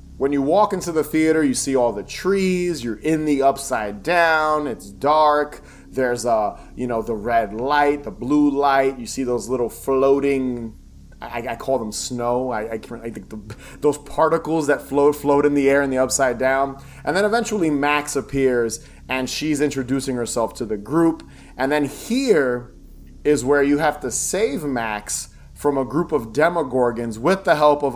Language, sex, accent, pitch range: English, male, American, 125-150 Hz